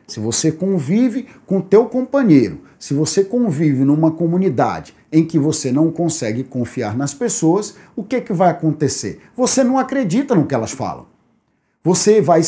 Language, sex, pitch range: Portuguese, male, 140-200 Hz